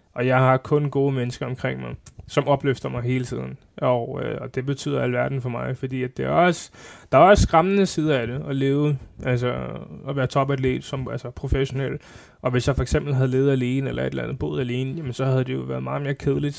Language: Danish